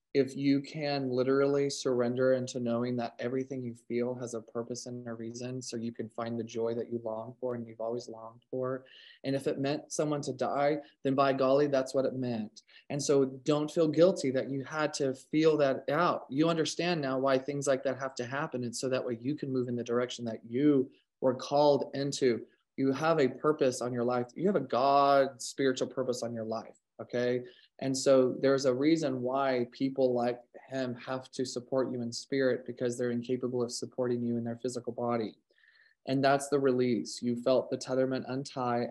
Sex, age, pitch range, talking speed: male, 20-39, 120-140 Hz, 210 wpm